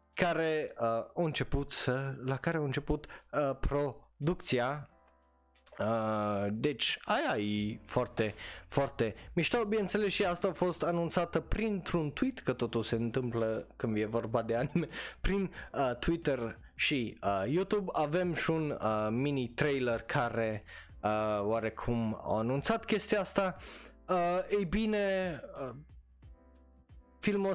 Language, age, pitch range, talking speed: Romanian, 20-39, 115-160 Hz, 125 wpm